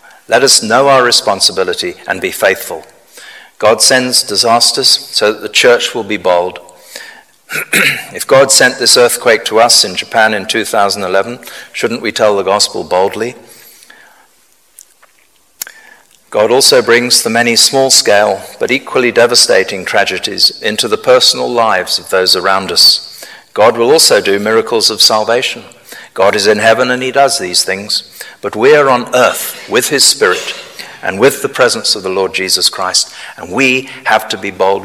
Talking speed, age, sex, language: 160 wpm, 50-69, male, English